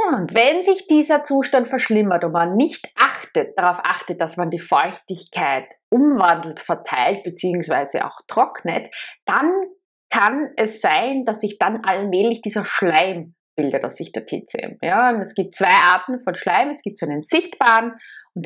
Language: German